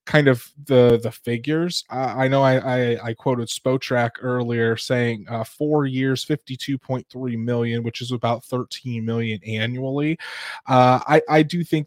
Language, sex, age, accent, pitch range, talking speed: English, male, 20-39, American, 120-140 Hz, 155 wpm